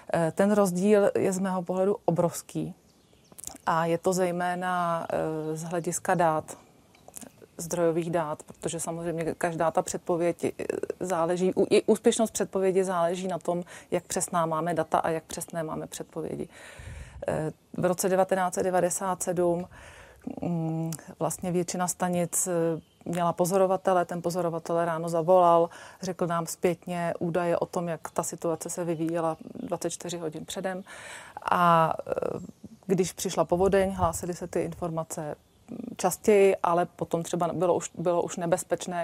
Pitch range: 170-185 Hz